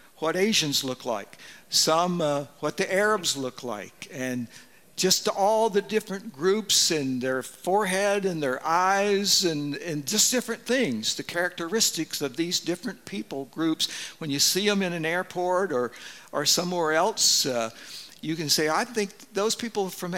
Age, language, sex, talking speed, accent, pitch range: 60-79, English, male, 165 wpm, American, 135-185 Hz